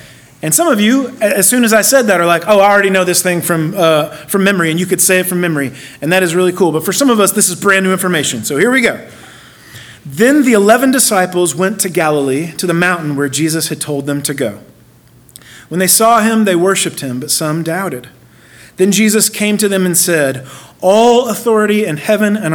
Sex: male